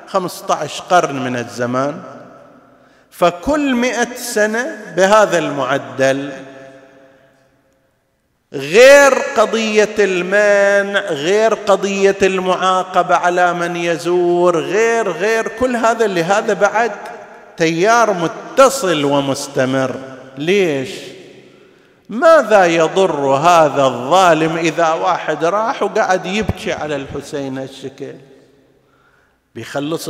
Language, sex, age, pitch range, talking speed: Arabic, male, 50-69, 140-205 Hz, 85 wpm